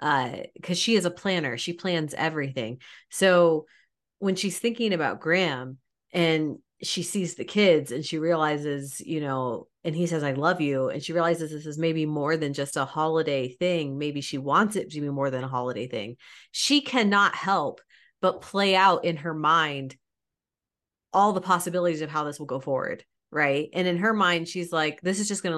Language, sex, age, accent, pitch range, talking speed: English, female, 30-49, American, 145-180 Hz, 195 wpm